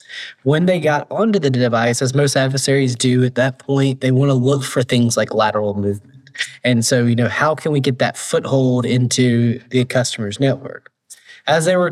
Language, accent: English, American